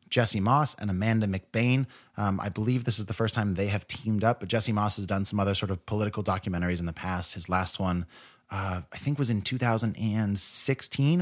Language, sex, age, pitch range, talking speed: English, male, 30-49, 95-125 Hz, 215 wpm